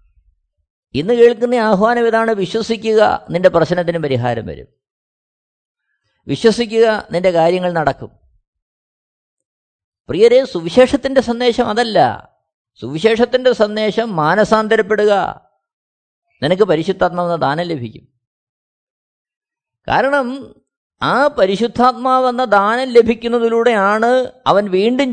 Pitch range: 175-250 Hz